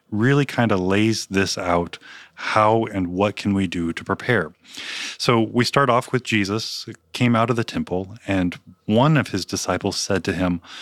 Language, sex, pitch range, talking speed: English, male, 95-120 Hz, 185 wpm